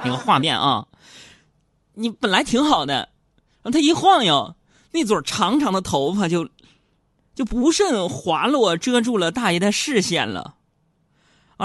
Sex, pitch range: male, 150-235 Hz